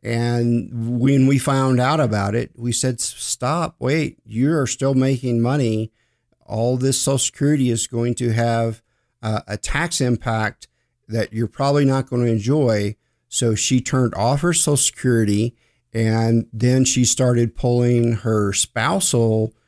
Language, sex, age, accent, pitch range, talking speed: English, male, 50-69, American, 110-130 Hz, 145 wpm